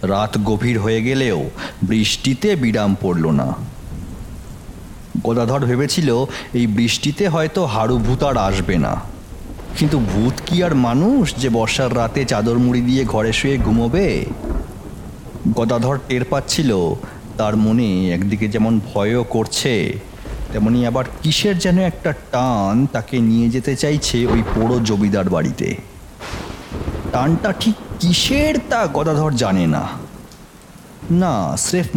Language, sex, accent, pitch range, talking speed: Bengali, male, native, 110-170 Hz, 95 wpm